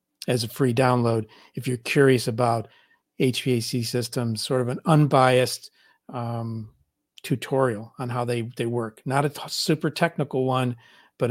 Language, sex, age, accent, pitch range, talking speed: English, male, 50-69, American, 120-135 Hz, 140 wpm